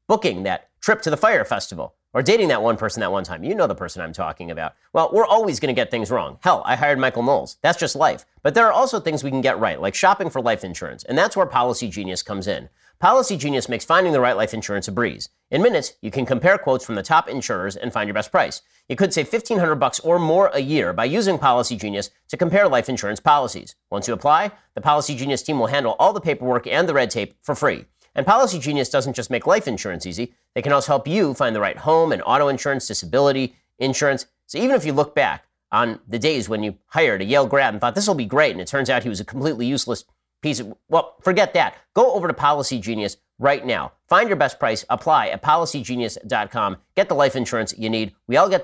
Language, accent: English, American